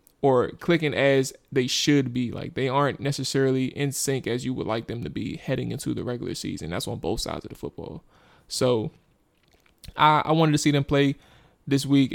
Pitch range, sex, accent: 130-150 Hz, male, American